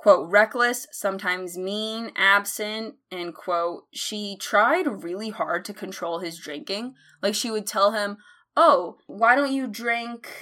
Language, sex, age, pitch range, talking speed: English, female, 20-39, 175-215 Hz, 145 wpm